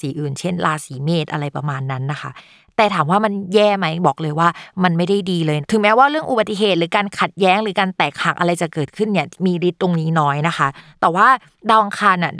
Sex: female